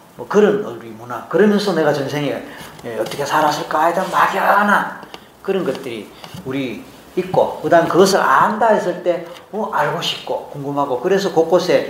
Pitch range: 130-175 Hz